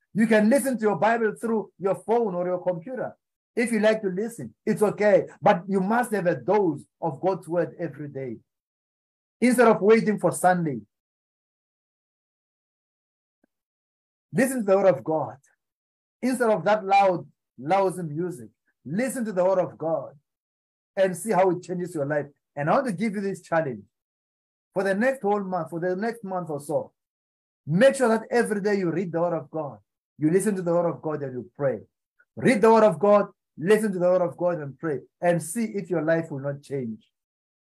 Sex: male